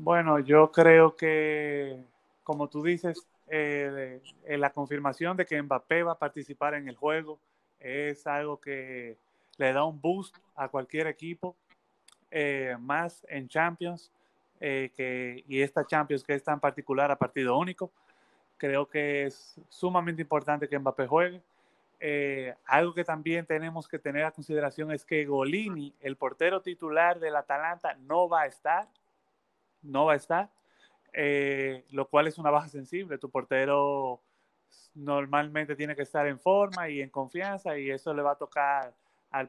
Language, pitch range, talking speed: Spanish, 140-165 Hz, 160 wpm